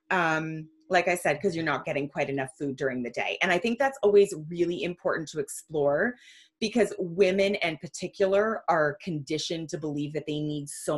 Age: 30-49